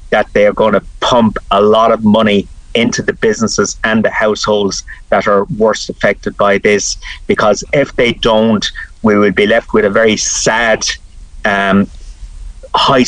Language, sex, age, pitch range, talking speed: English, male, 30-49, 105-115 Hz, 165 wpm